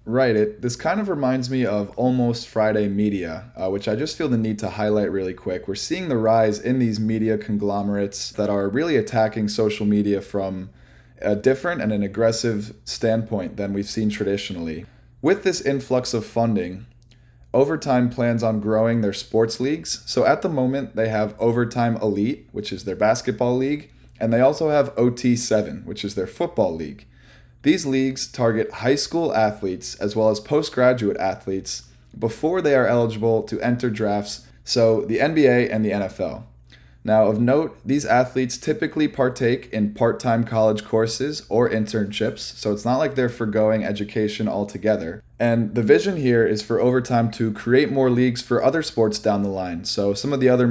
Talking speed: 175 wpm